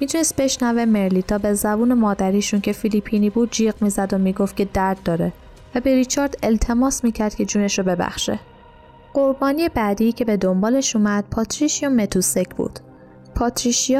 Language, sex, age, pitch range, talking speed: Persian, female, 10-29, 190-230 Hz, 155 wpm